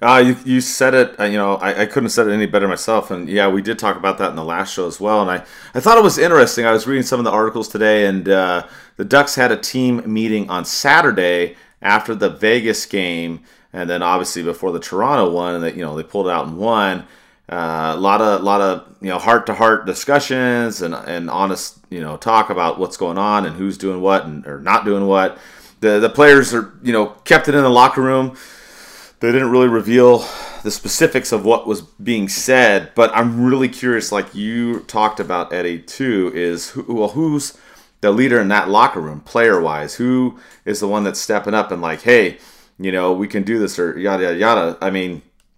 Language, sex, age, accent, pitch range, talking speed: English, male, 30-49, American, 95-125 Hz, 230 wpm